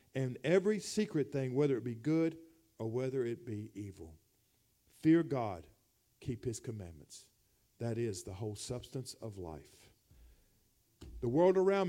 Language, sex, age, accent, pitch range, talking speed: English, male, 50-69, American, 105-145 Hz, 140 wpm